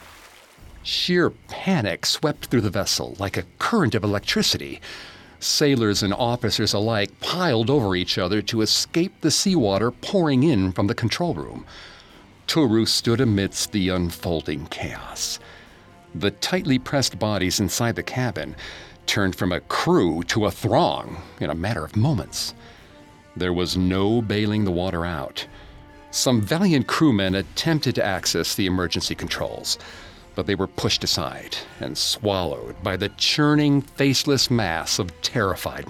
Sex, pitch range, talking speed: male, 90-125 Hz, 140 wpm